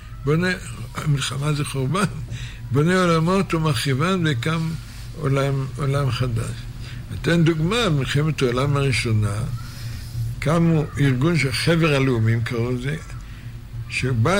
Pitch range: 120-175 Hz